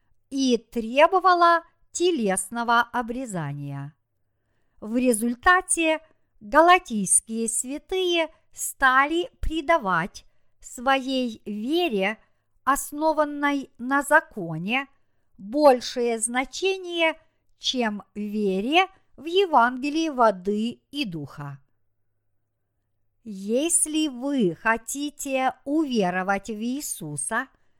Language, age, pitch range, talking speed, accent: Russian, 50-69, 215-310 Hz, 65 wpm, native